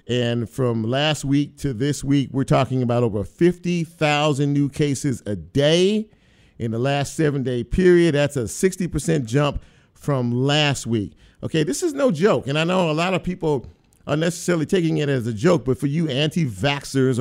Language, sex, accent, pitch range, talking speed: English, male, American, 130-170 Hz, 180 wpm